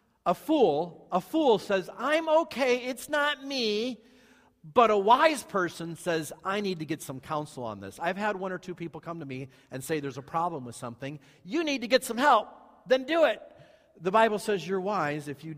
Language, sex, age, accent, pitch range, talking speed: English, male, 50-69, American, 150-230 Hz, 210 wpm